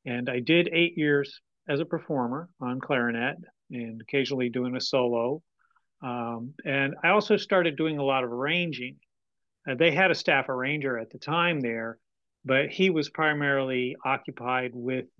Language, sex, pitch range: English, male, 130-160 Hz